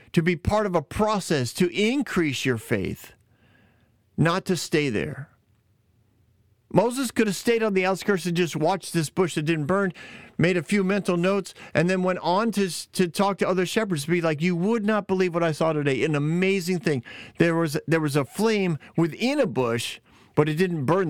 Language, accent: English, American